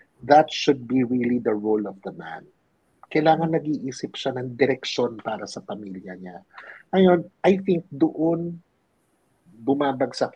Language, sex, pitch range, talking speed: English, male, 145-230 Hz, 135 wpm